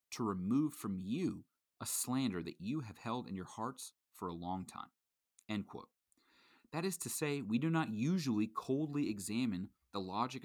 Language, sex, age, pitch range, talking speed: English, male, 30-49, 105-145 Hz, 160 wpm